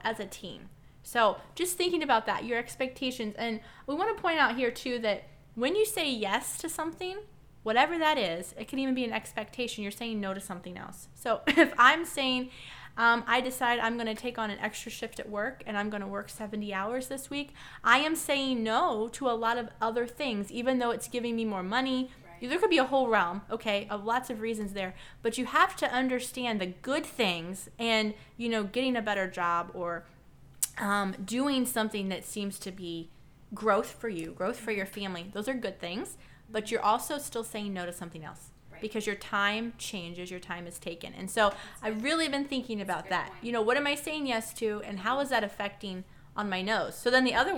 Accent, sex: American, female